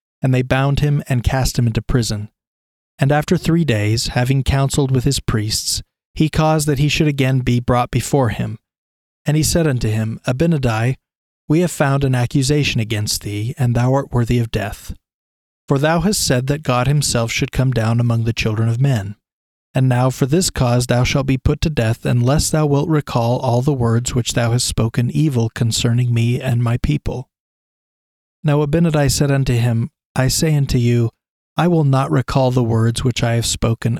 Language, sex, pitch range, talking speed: English, male, 115-140 Hz, 190 wpm